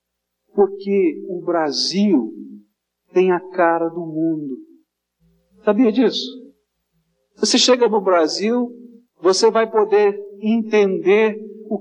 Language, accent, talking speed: Portuguese, Brazilian, 95 wpm